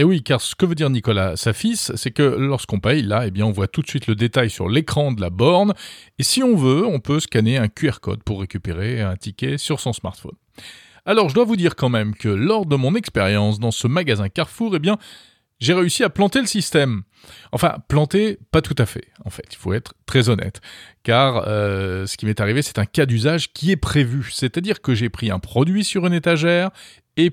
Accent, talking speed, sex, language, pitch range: French, 225 wpm, male, French, 110-160 Hz